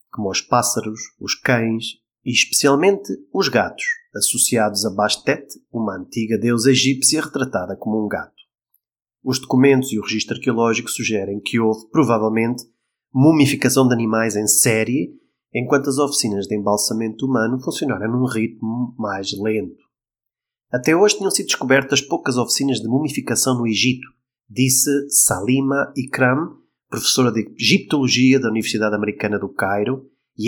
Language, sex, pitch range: Portuguese, male, 110-135 Hz